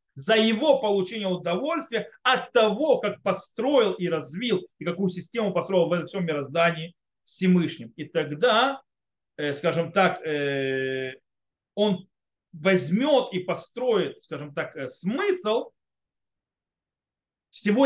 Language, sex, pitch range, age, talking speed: Russian, male, 150-210 Hz, 30-49, 105 wpm